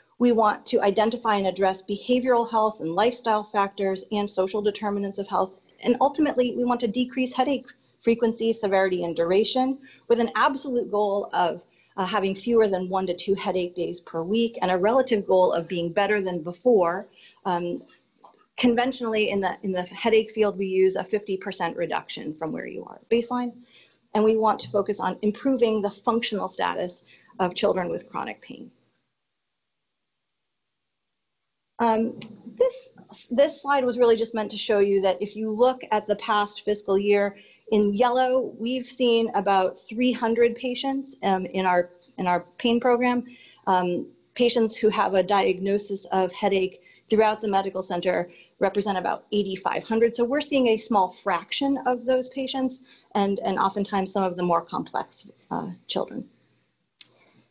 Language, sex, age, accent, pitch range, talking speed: English, female, 30-49, American, 190-240 Hz, 160 wpm